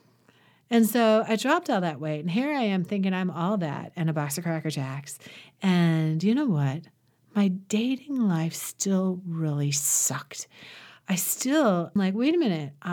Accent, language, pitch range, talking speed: American, English, 170-250 Hz, 170 wpm